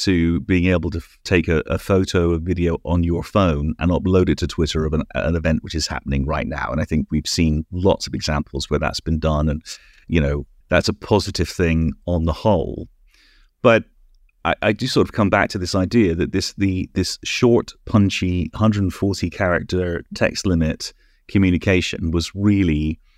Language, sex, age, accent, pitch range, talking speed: English, male, 30-49, British, 80-95 Hz, 185 wpm